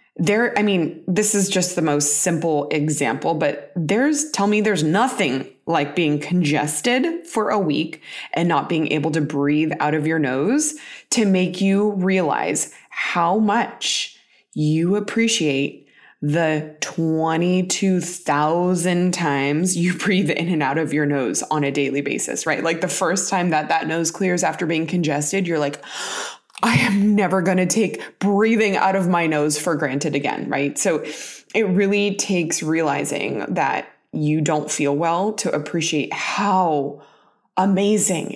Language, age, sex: English, 20-39, female